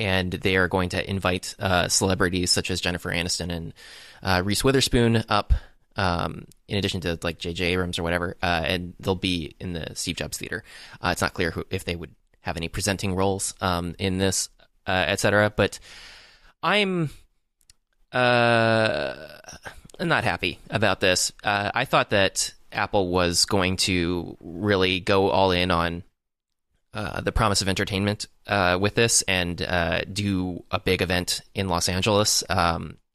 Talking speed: 160 wpm